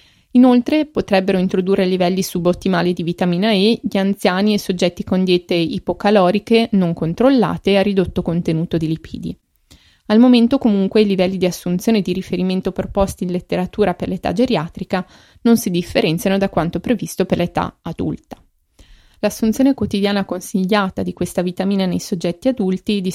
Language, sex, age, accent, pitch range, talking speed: Italian, female, 20-39, native, 180-215 Hz, 145 wpm